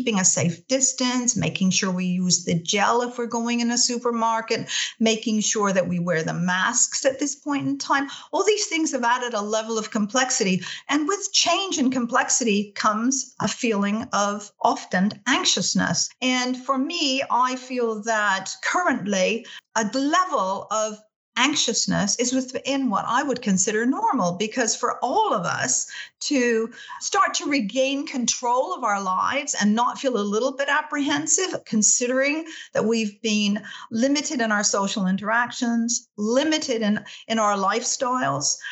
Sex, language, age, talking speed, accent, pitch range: female, English, 50-69, 155 wpm, American, 210-265 Hz